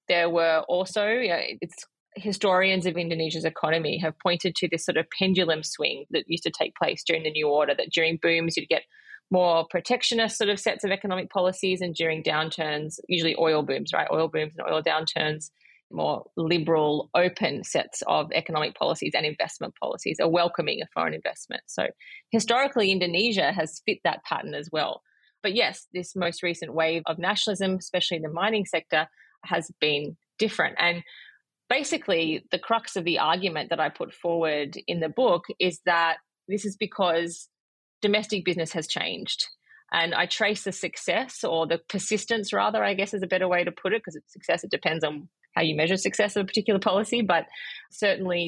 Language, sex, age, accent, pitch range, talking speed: English, female, 30-49, Australian, 160-200 Hz, 185 wpm